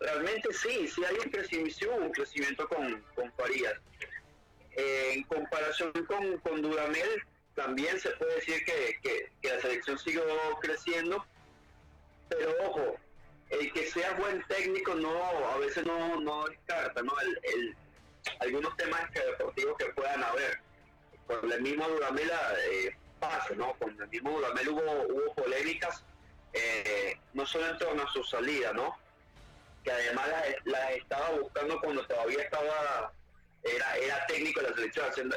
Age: 30-49